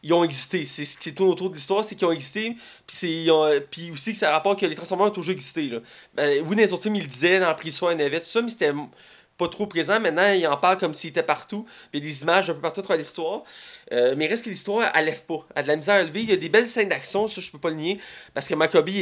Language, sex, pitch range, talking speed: French, male, 165-210 Hz, 295 wpm